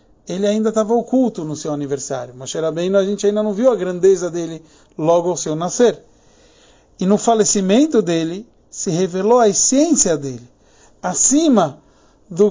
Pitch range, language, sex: 185-245 Hz, Portuguese, male